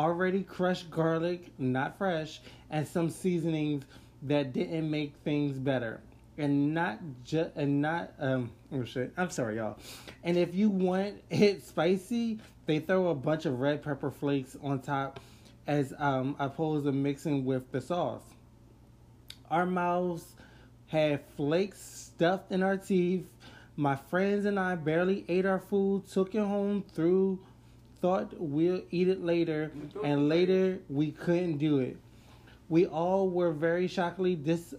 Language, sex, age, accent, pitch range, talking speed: English, male, 20-39, American, 135-180 Hz, 145 wpm